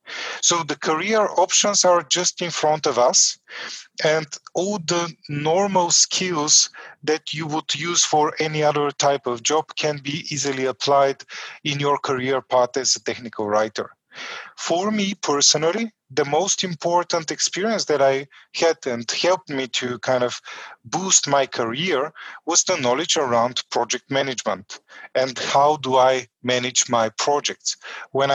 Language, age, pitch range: English, 30-49, 130-165 Hz